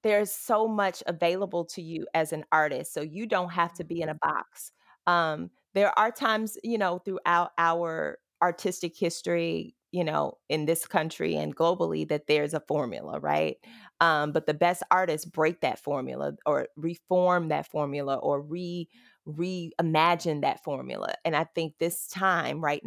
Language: English